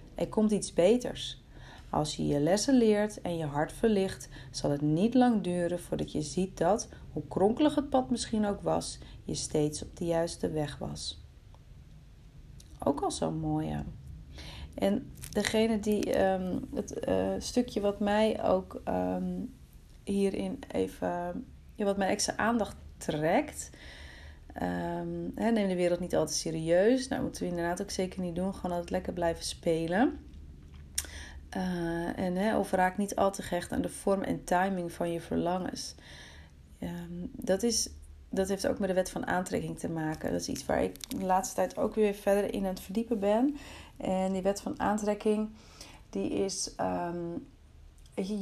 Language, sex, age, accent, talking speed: Dutch, female, 40-59, Dutch, 165 wpm